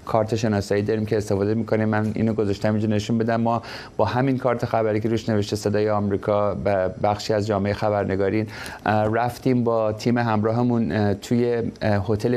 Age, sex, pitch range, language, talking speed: 30-49, male, 105-115 Hz, Persian, 160 wpm